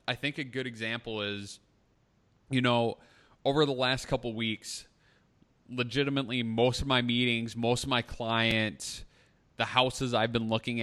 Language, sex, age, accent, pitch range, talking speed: English, male, 20-39, American, 110-130 Hz, 155 wpm